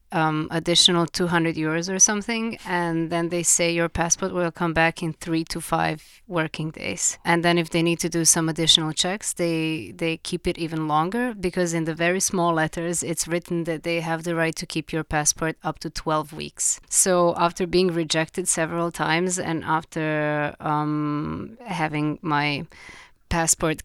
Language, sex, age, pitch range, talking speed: English, female, 30-49, 150-170 Hz, 175 wpm